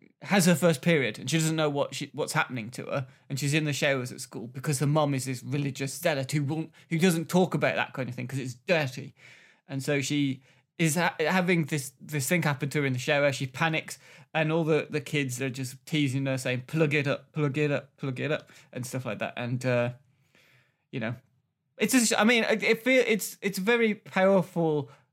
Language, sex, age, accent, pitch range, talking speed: English, male, 20-39, British, 130-165 Hz, 225 wpm